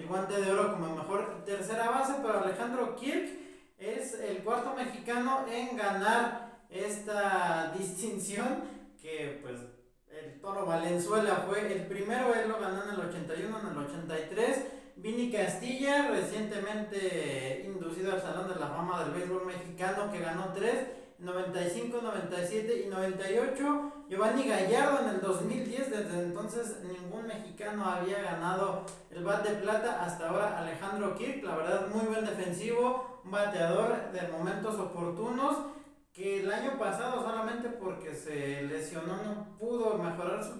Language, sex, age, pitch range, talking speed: Spanish, male, 40-59, 180-225 Hz, 140 wpm